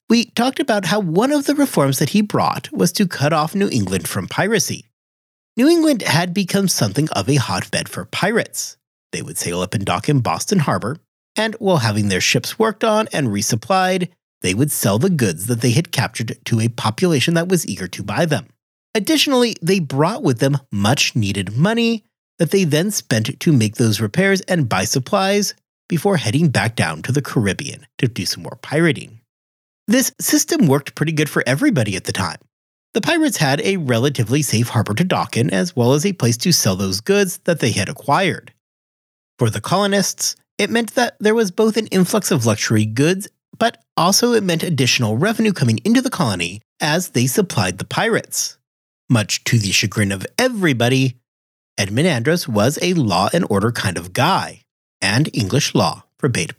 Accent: American